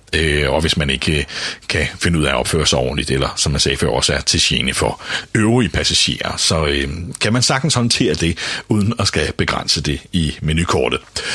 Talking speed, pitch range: 190 wpm, 75-105 Hz